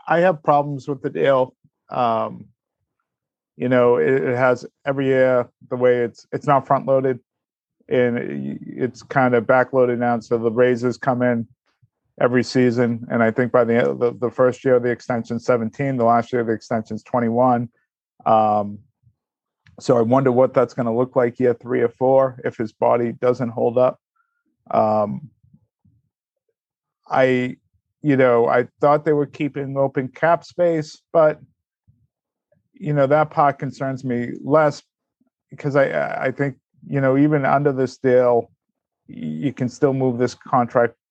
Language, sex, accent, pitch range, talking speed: English, male, American, 120-140 Hz, 165 wpm